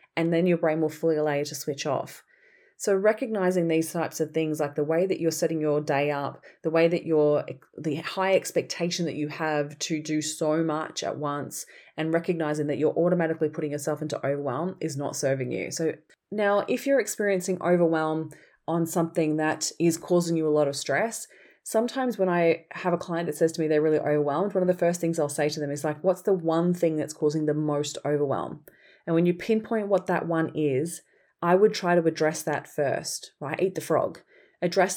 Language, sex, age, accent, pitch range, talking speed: English, female, 20-39, Australian, 150-175 Hz, 215 wpm